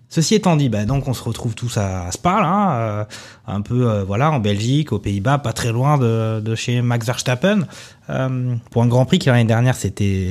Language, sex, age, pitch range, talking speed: French, male, 20-39, 110-140 Hz, 220 wpm